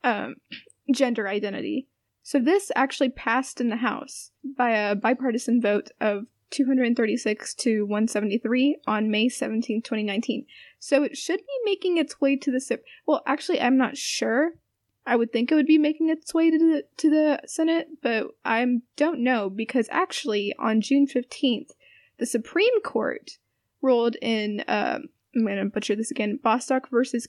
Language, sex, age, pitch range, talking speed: English, female, 10-29, 220-275 Hz, 165 wpm